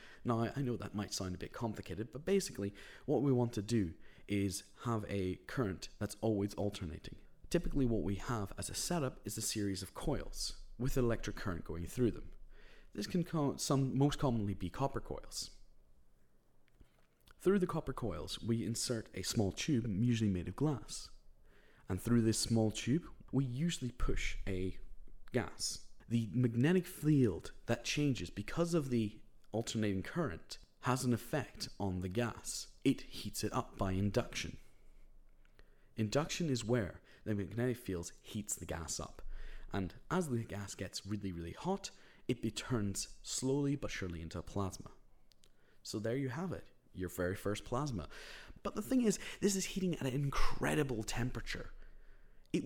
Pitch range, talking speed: 100-135 Hz, 160 wpm